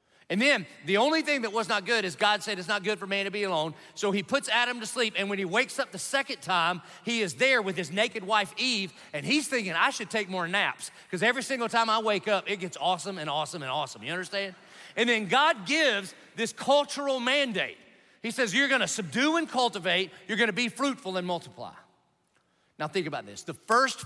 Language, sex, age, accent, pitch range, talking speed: English, male, 40-59, American, 165-215 Hz, 230 wpm